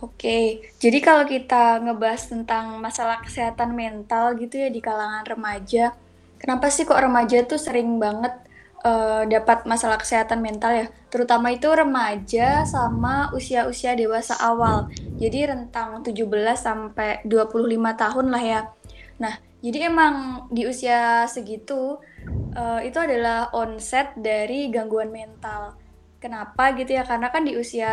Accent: native